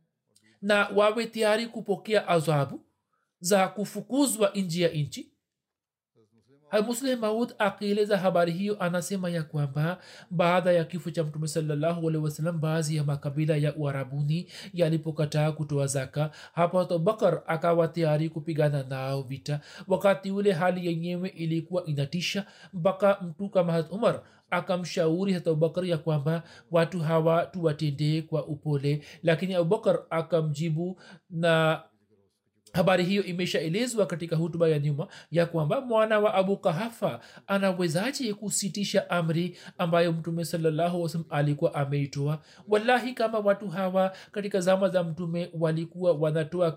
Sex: male